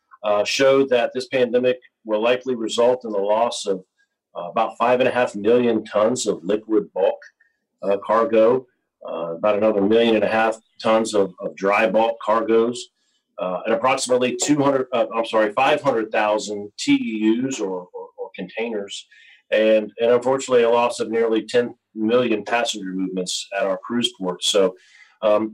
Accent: American